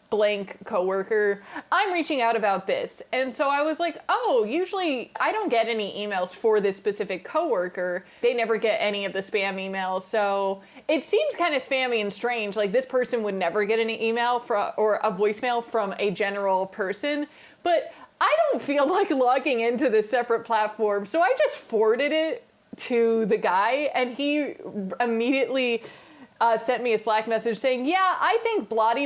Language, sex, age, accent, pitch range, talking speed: English, female, 20-39, American, 215-310 Hz, 180 wpm